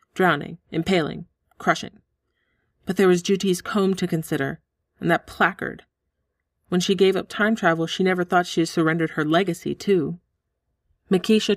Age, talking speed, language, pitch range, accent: 30-49, 150 wpm, English, 155-185 Hz, American